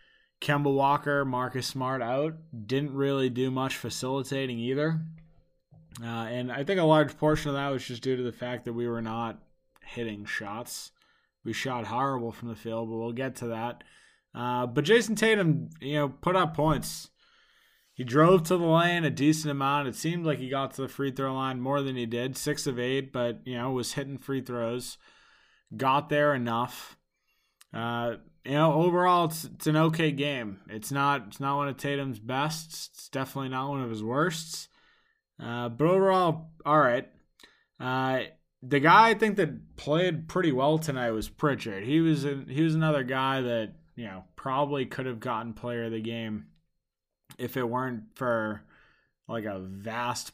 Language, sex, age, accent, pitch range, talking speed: English, male, 20-39, American, 120-155 Hz, 180 wpm